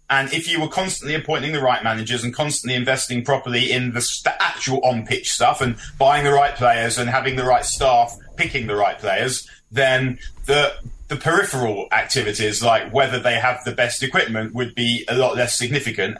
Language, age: English, 30-49